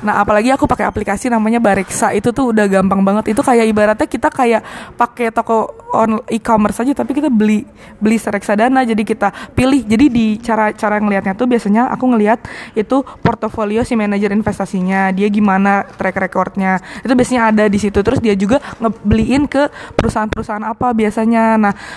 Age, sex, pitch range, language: 20-39, female, 205-235 Hz, Indonesian